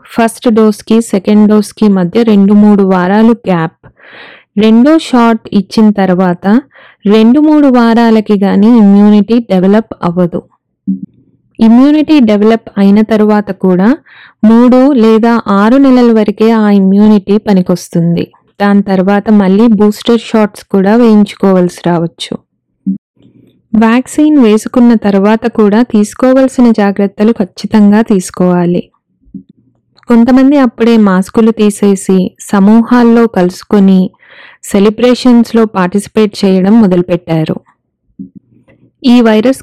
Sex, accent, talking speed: female, native, 95 wpm